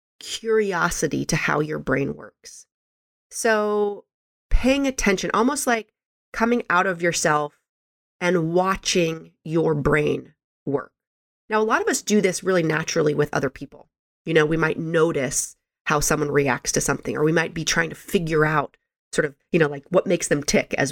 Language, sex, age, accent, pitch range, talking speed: English, female, 30-49, American, 160-210 Hz, 170 wpm